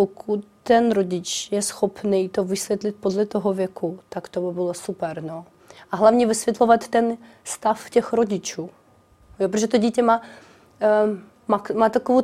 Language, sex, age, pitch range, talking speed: Czech, female, 30-49, 185-215 Hz, 155 wpm